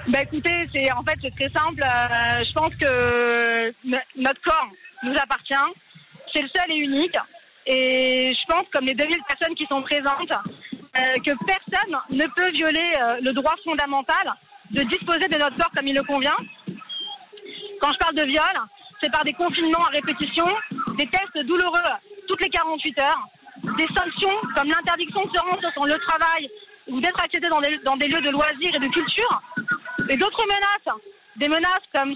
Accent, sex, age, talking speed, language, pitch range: French, female, 20-39, 180 wpm, French, 275-345 Hz